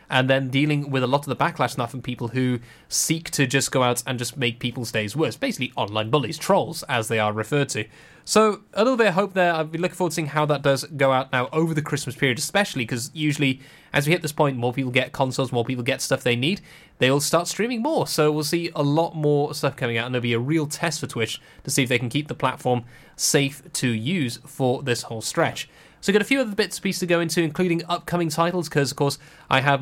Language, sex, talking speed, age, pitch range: English, male, 260 wpm, 10-29, 130-175 Hz